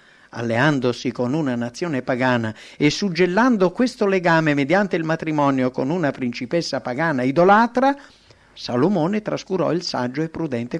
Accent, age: Italian, 50-69